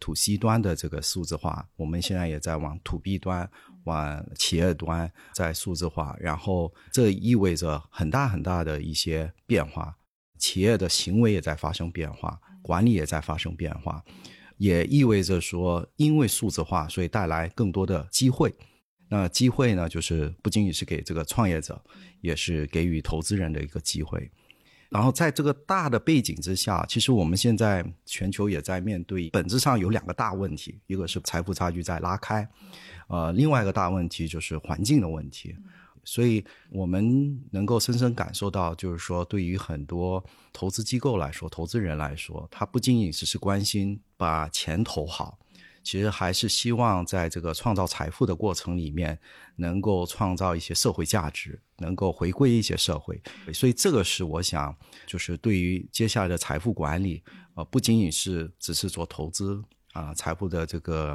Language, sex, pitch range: Chinese, male, 80-105 Hz